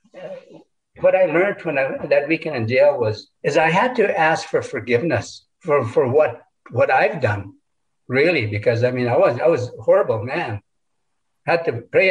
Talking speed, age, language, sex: 185 wpm, 60-79, English, male